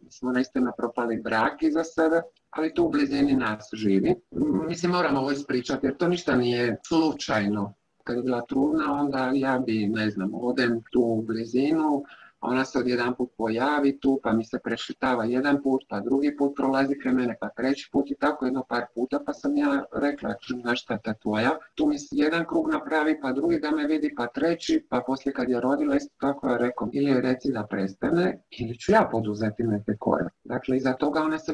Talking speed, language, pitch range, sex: 195 wpm, Croatian, 115-145 Hz, male